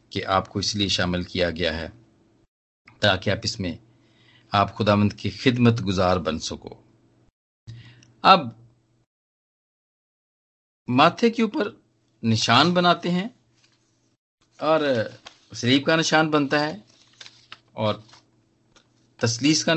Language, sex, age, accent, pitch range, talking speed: Hindi, male, 50-69, native, 100-120 Hz, 100 wpm